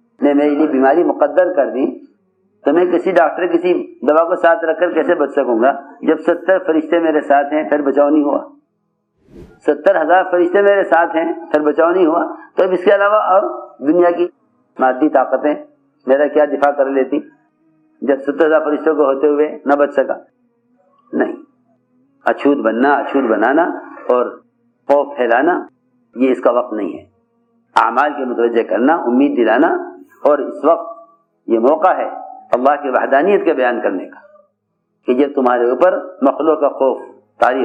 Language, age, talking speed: Urdu, 50-69, 170 wpm